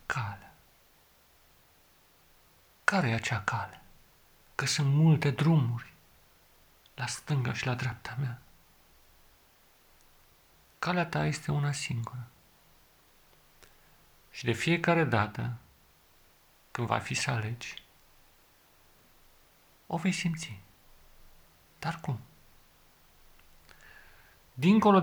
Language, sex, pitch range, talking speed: Romanian, male, 110-145 Hz, 80 wpm